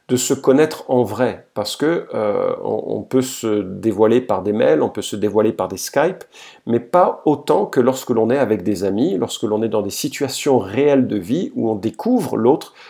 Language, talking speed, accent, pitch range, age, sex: French, 205 wpm, French, 105-145 Hz, 50-69, male